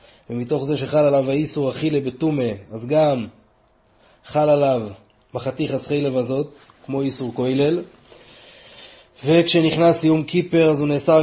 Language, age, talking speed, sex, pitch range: Hebrew, 20-39, 125 wpm, male, 130-155 Hz